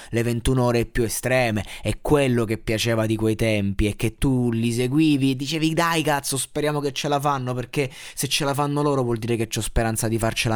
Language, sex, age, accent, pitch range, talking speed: Italian, male, 20-39, native, 110-135 Hz, 220 wpm